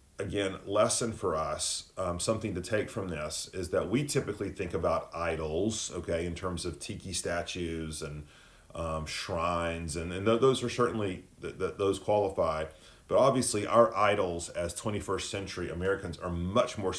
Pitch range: 85-105 Hz